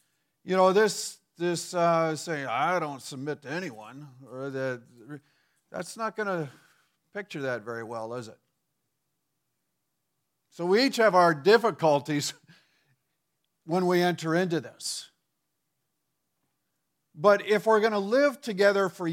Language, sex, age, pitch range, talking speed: English, male, 50-69, 155-210 Hz, 130 wpm